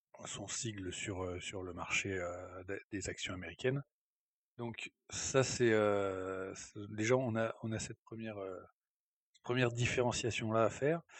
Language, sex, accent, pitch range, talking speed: French, male, French, 105-125 Hz, 140 wpm